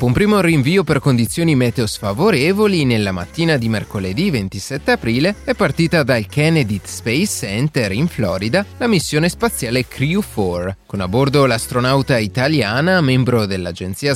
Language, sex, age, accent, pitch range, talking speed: Italian, male, 30-49, native, 110-165 Hz, 135 wpm